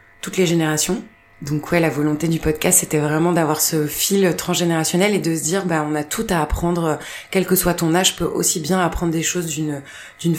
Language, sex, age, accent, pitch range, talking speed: French, female, 20-39, French, 155-180 Hz, 225 wpm